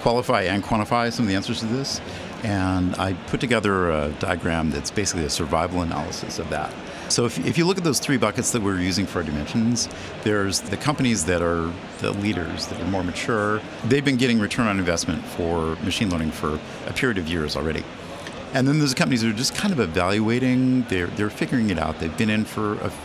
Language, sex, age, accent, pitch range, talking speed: English, male, 50-69, American, 90-120 Hz, 215 wpm